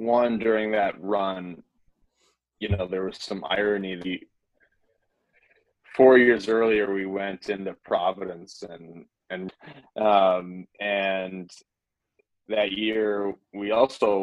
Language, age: English, 20-39